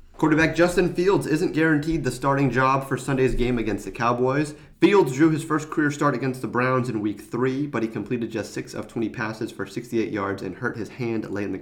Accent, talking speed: American, 225 wpm